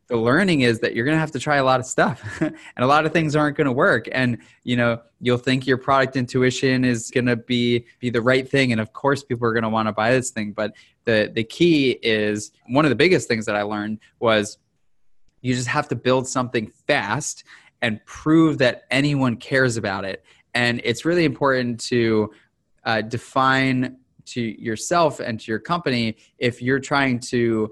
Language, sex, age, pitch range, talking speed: English, male, 20-39, 110-135 Hz, 210 wpm